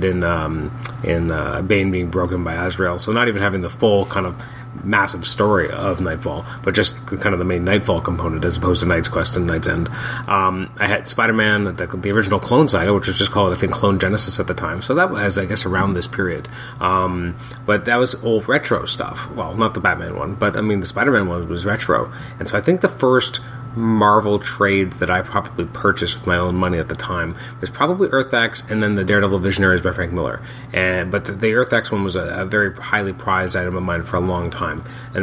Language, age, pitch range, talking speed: English, 30-49, 90-115 Hz, 235 wpm